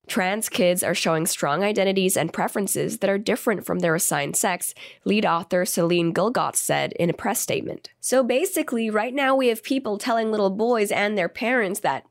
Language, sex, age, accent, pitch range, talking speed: English, female, 20-39, American, 195-245 Hz, 190 wpm